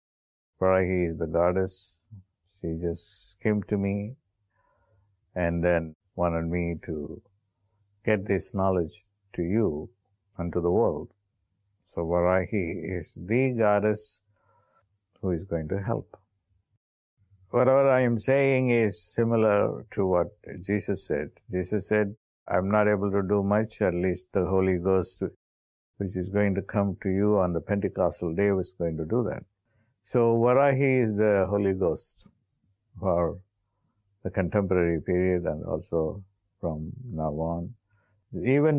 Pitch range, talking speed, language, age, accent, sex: 90-105 Hz, 135 wpm, English, 50-69, Indian, male